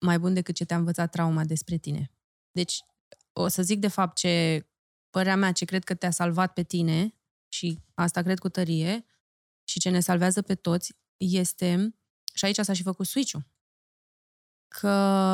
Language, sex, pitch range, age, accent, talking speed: Romanian, female, 170-190 Hz, 20-39, native, 170 wpm